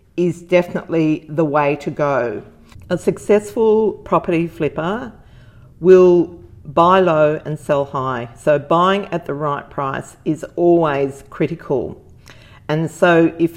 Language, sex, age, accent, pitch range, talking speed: English, female, 40-59, Australian, 145-170 Hz, 120 wpm